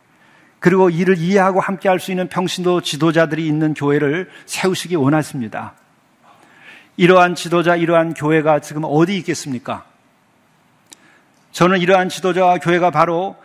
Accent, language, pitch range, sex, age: native, Korean, 155-185 Hz, male, 50-69